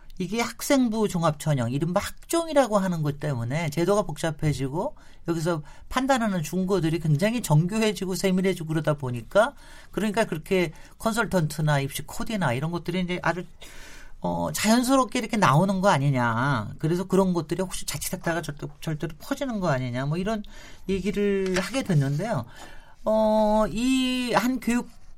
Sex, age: male, 40-59